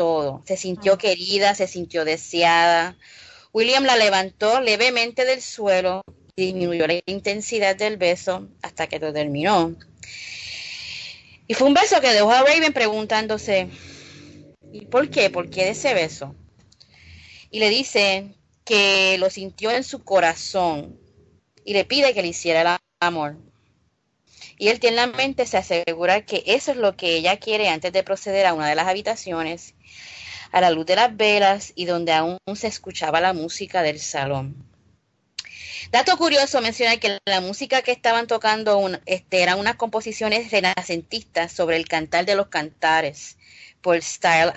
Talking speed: 155 wpm